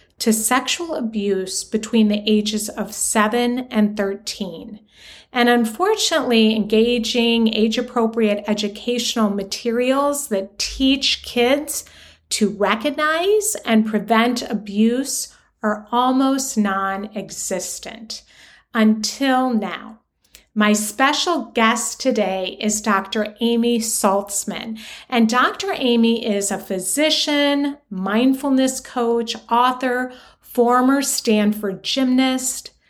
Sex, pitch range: female, 205-255 Hz